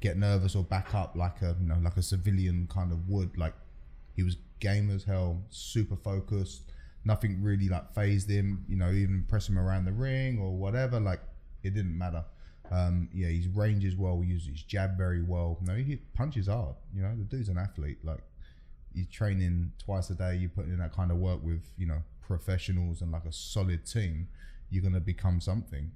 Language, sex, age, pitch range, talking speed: English, male, 20-39, 85-100 Hz, 210 wpm